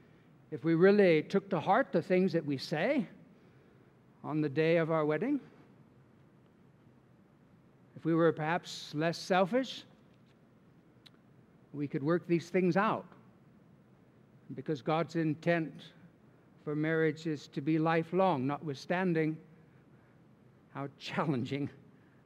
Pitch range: 150-195 Hz